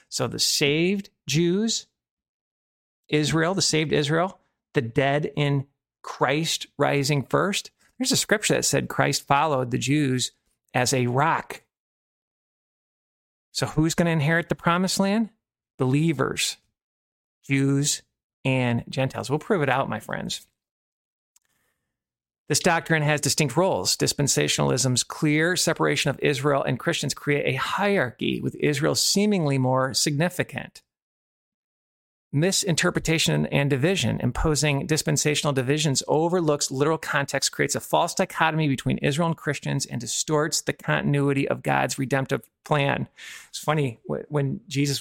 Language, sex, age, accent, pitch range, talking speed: English, male, 40-59, American, 135-160 Hz, 125 wpm